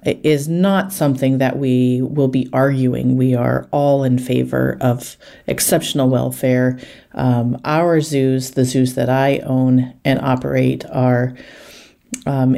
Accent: American